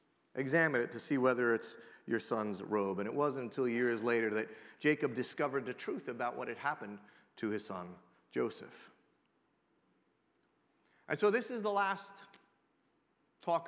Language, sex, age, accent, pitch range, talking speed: English, male, 40-59, American, 130-195 Hz, 155 wpm